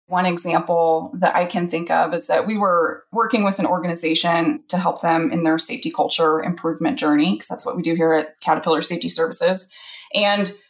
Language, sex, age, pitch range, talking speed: English, female, 20-39, 170-240 Hz, 195 wpm